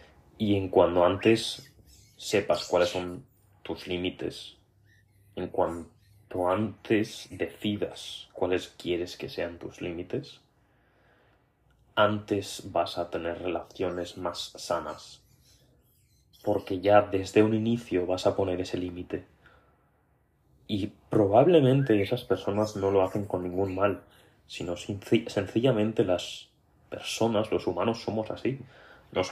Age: 20-39